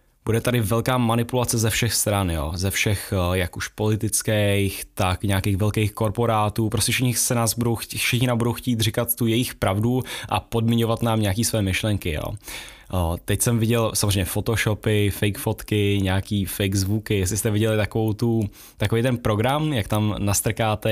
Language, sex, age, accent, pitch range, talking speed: Czech, male, 10-29, native, 100-120 Hz, 150 wpm